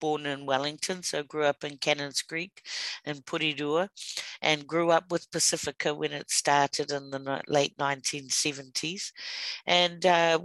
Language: English